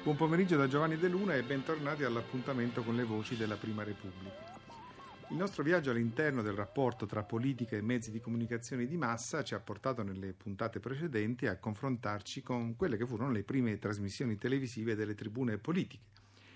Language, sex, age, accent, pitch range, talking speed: Italian, male, 50-69, native, 105-145 Hz, 175 wpm